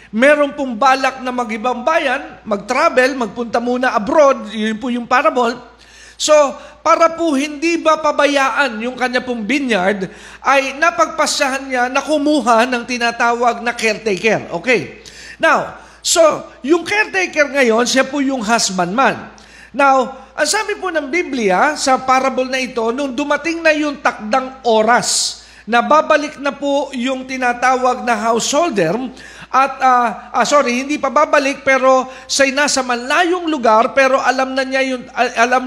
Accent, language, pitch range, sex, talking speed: native, Filipino, 245-295 Hz, male, 145 wpm